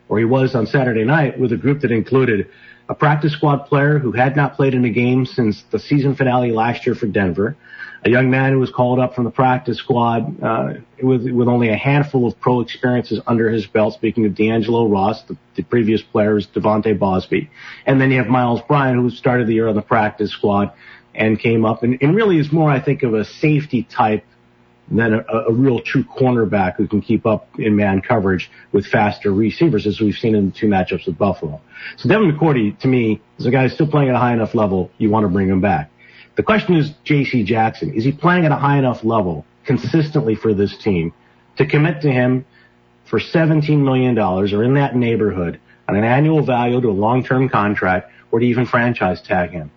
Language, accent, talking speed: English, American, 220 wpm